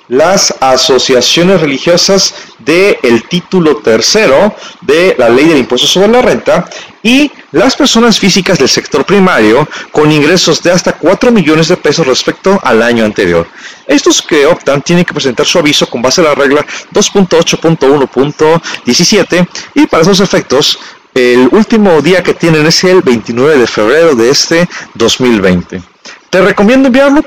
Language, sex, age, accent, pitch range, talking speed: Spanish, male, 40-59, Mexican, 135-195 Hz, 145 wpm